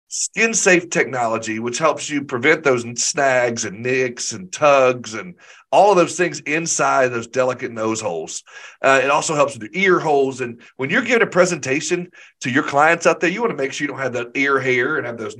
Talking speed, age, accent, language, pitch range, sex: 220 wpm, 40-59, American, English, 110-145 Hz, male